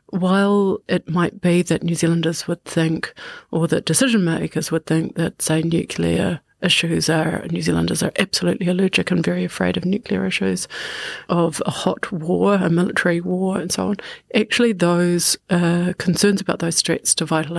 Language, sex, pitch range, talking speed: English, female, 165-180 Hz, 170 wpm